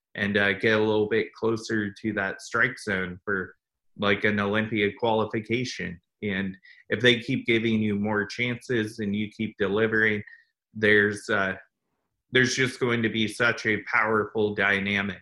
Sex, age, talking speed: male, 30-49, 155 wpm